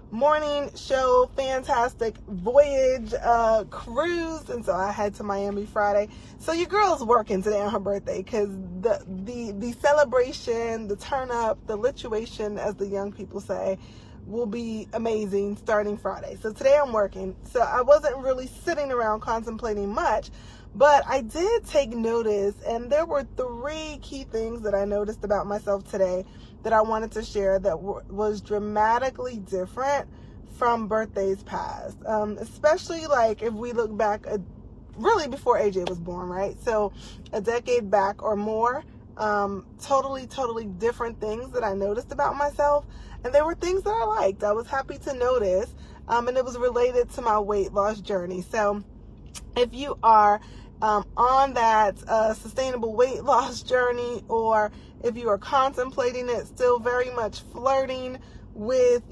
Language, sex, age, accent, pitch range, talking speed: English, female, 20-39, American, 205-260 Hz, 160 wpm